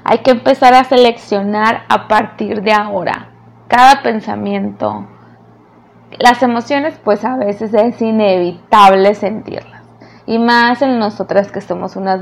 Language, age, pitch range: Spanish, 20-39, 195-220 Hz